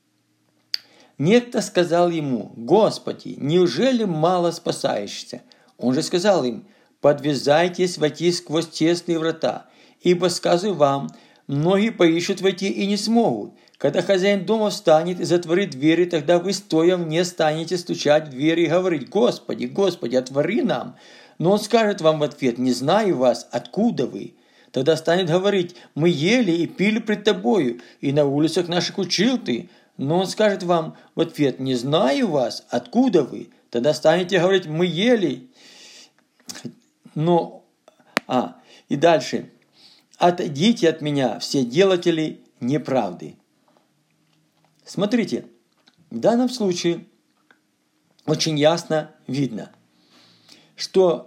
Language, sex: Russian, male